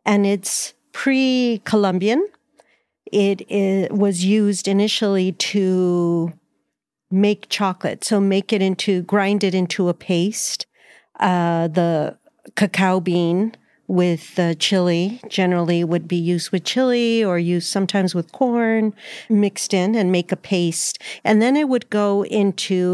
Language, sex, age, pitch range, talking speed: English, female, 50-69, 170-205 Hz, 130 wpm